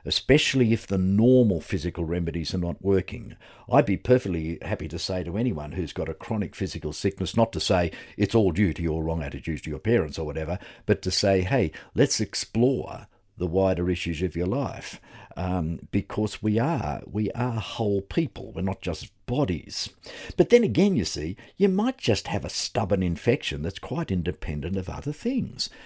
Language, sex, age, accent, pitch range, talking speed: English, male, 50-69, Australian, 85-115 Hz, 185 wpm